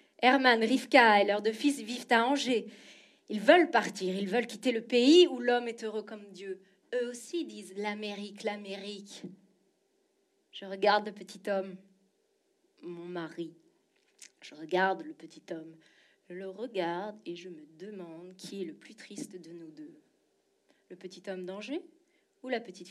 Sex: female